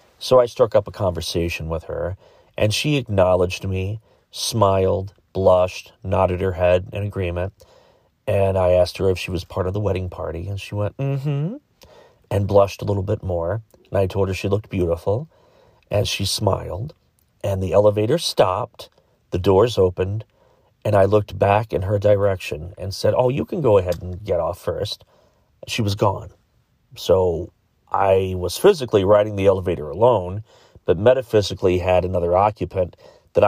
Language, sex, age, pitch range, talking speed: English, male, 40-59, 90-105 Hz, 170 wpm